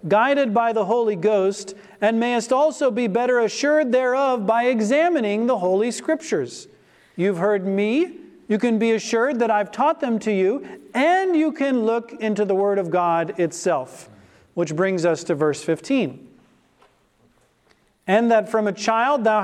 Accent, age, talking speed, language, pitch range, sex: American, 40-59, 160 wpm, English, 195-245 Hz, male